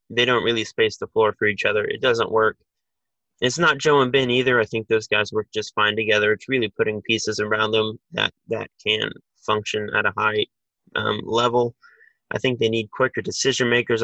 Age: 20-39